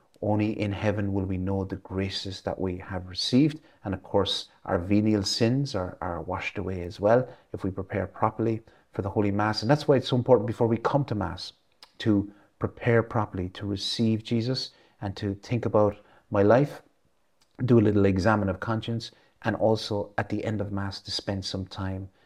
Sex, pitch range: male, 100-115 Hz